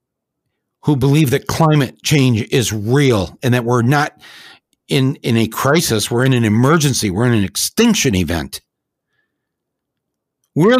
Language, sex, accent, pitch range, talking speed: English, male, American, 125-180 Hz, 140 wpm